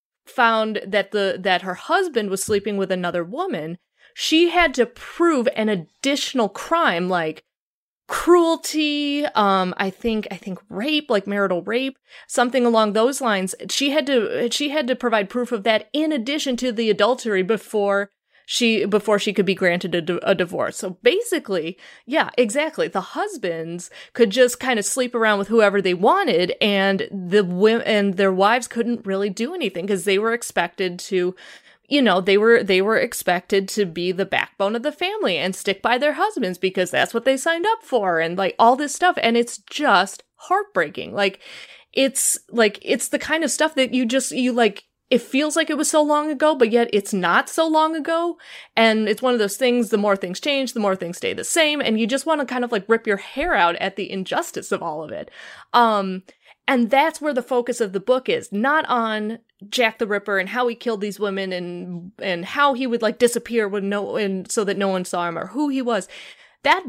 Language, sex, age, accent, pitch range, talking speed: English, female, 30-49, American, 195-275 Hz, 205 wpm